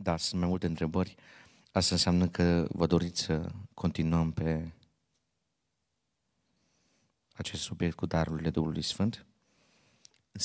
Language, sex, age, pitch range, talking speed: Romanian, male, 30-49, 85-100 Hz, 115 wpm